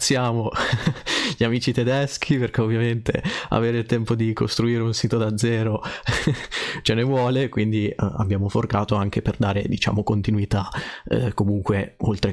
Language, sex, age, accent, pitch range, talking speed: Italian, male, 30-49, native, 105-120 Hz, 140 wpm